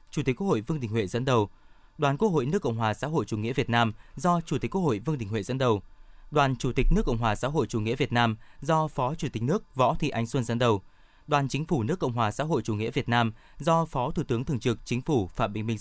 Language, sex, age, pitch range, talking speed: Vietnamese, male, 20-39, 115-155 Hz, 290 wpm